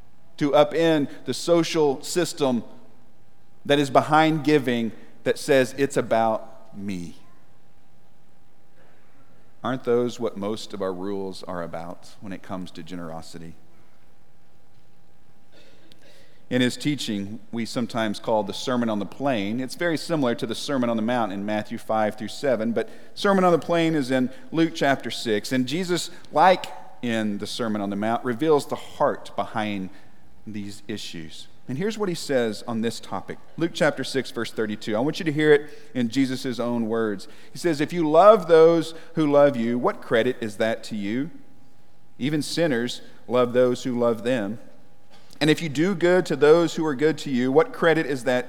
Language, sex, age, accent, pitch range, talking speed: English, male, 40-59, American, 110-160 Hz, 170 wpm